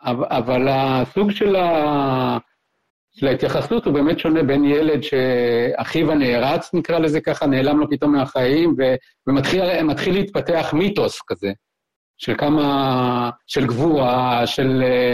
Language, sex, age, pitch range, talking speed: Hebrew, male, 50-69, 130-165 Hz, 105 wpm